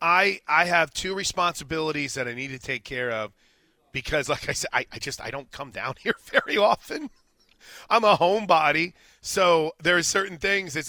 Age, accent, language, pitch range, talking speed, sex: 30-49, American, English, 135-195 Hz, 195 wpm, male